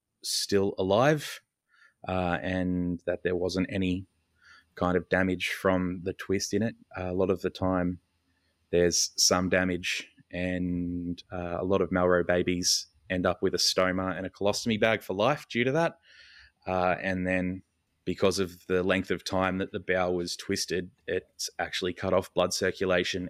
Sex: male